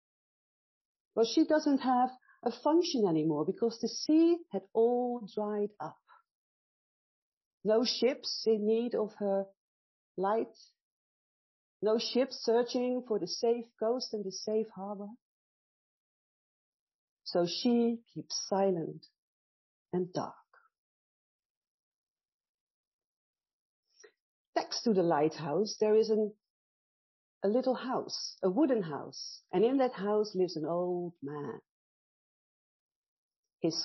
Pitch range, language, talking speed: 185-245 Hz, English, 105 wpm